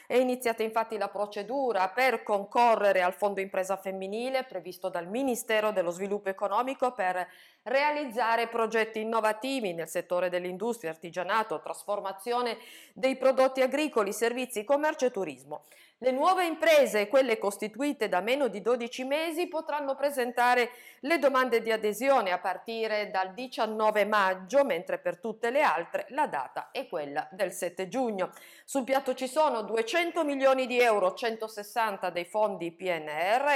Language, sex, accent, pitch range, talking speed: Italian, female, native, 195-260 Hz, 140 wpm